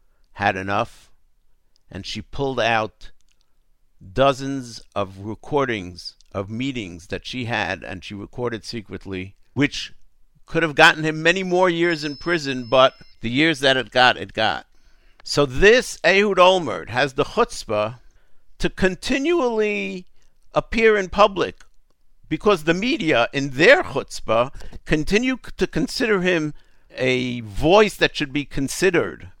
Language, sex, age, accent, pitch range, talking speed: English, male, 60-79, American, 95-150 Hz, 130 wpm